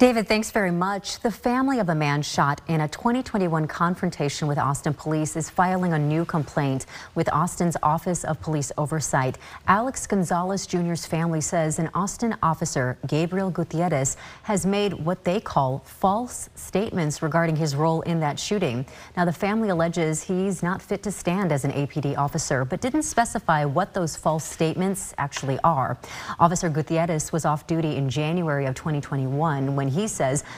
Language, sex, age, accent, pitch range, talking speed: English, female, 30-49, American, 145-180 Hz, 170 wpm